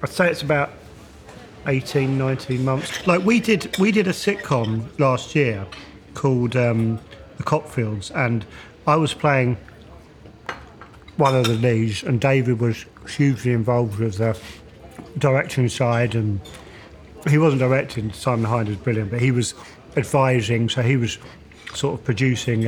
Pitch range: 120-150 Hz